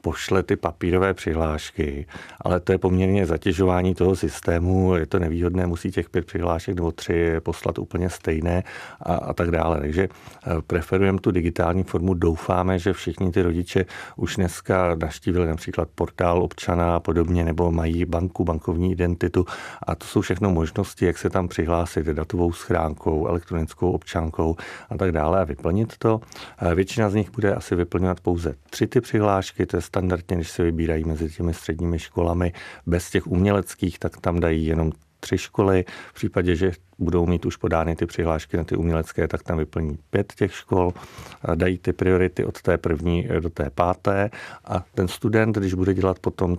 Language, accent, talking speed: Czech, native, 170 wpm